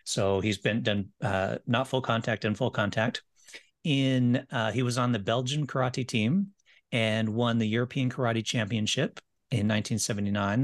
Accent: American